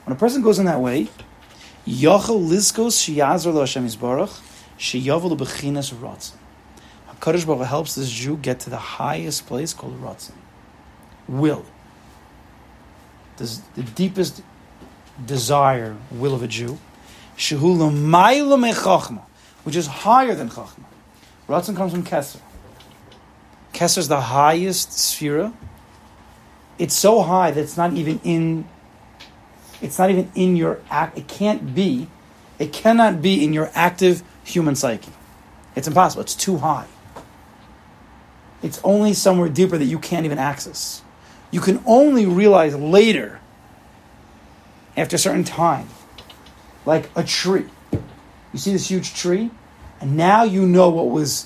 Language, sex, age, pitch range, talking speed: English, male, 40-59, 145-190 Hz, 135 wpm